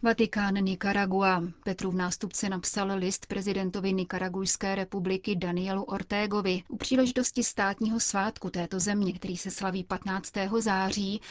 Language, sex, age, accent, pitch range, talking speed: Czech, female, 30-49, native, 185-210 Hz, 120 wpm